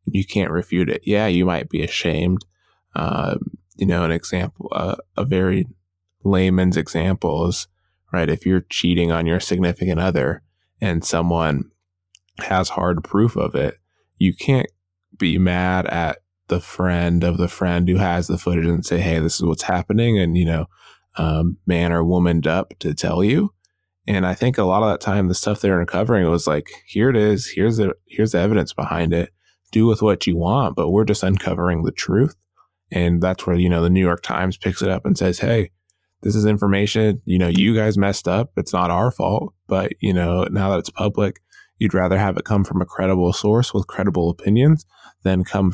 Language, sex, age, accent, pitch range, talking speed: English, male, 20-39, American, 85-100 Hz, 200 wpm